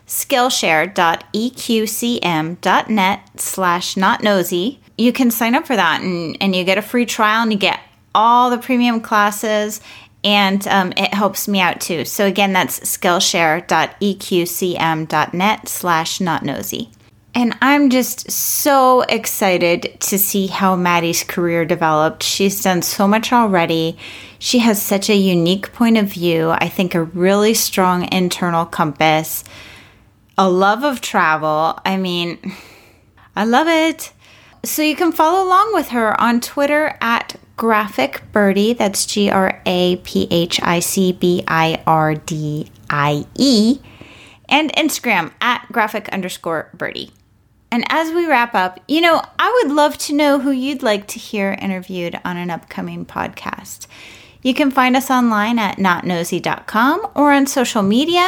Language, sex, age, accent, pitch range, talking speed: English, female, 30-49, American, 175-240 Hz, 145 wpm